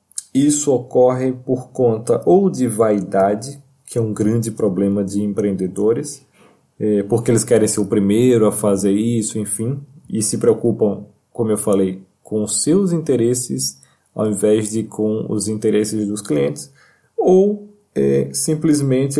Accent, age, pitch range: Brazilian, 20-39, 105-125 Hz